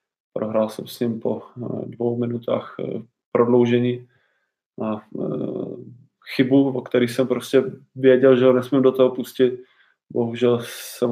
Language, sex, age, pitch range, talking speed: Czech, male, 20-39, 120-130 Hz, 125 wpm